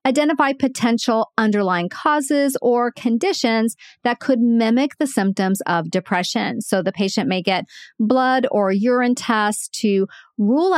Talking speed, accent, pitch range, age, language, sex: 135 wpm, American, 195-255 Hz, 40-59, English, female